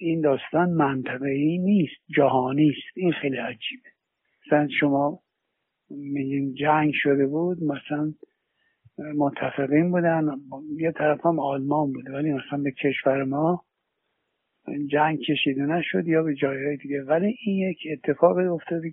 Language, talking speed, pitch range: Persian, 125 wpm, 140-160 Hz